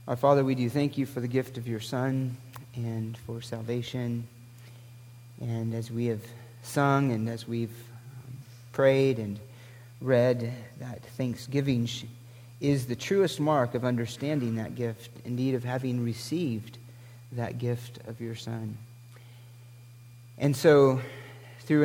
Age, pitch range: 40-59, 120-130 Hz